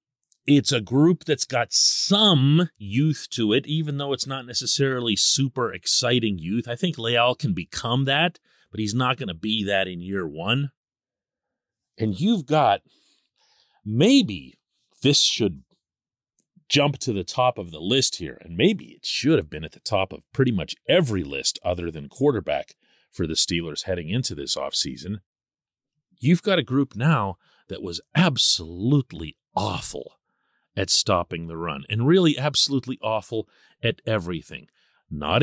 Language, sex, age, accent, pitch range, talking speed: English, male, 40-59, American, 105-150 Hz, 155 wpm